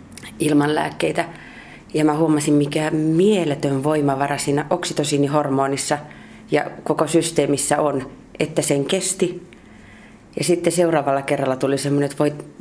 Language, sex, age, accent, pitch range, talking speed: Finnish, female, 30-49, native, 145-175 Hz, 115 wpm